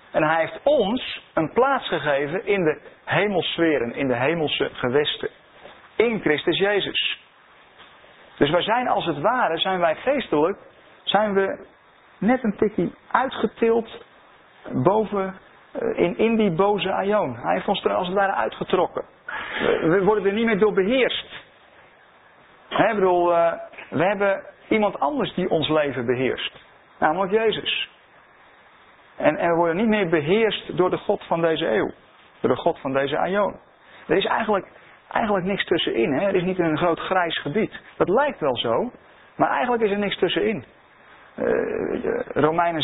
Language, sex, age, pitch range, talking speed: Dutch, male, 50-69, 170-220 Hz, 155 wpm